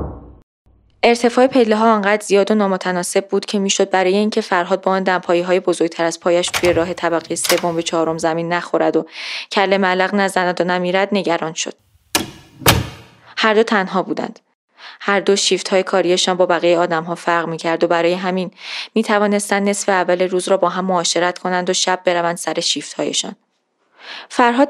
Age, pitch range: 20-39, 170-195 Hz